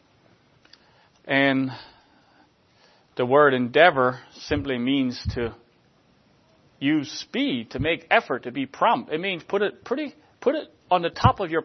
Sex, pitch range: male, 125-170 Hz